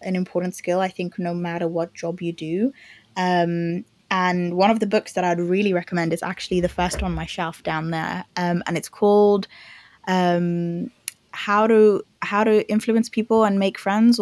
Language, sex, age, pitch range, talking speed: English, female, 20-39, 175-195 Hz, 185 wpm